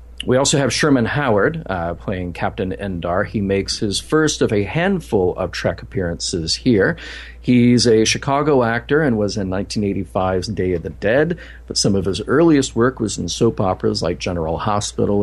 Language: English